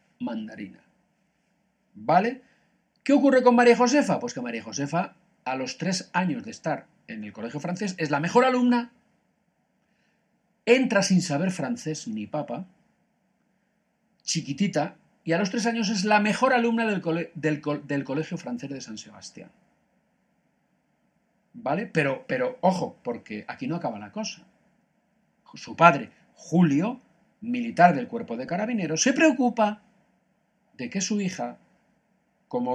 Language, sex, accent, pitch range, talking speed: Spanish, male, Spanish, 170-225 Hz, 140 wpm